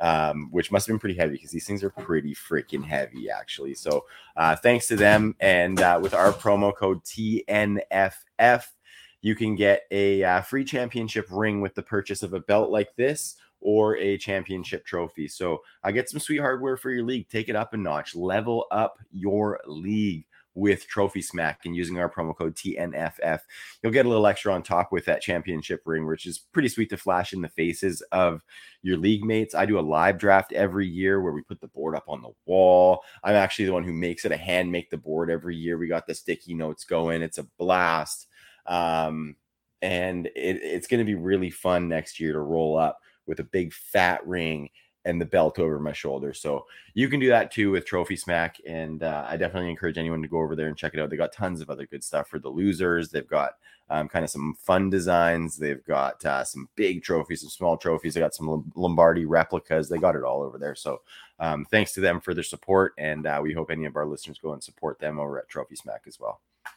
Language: English